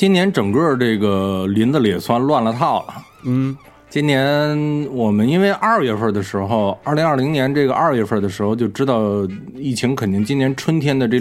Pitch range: 110-145 Hz